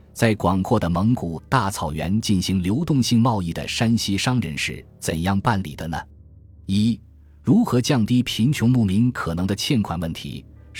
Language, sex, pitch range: Chinese, male, 85-115 Hz